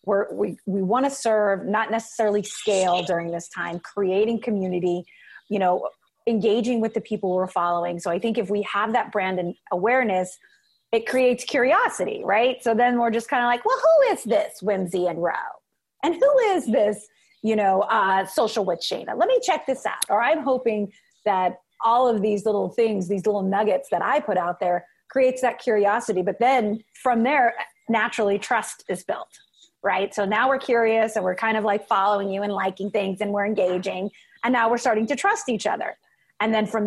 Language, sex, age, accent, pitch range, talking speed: English, female, 30-49, American, 195-235 Hz, 200 wpm